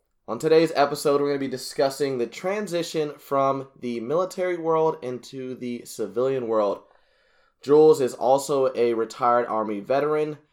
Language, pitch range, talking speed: English, 115-145 Hz, 140 wpm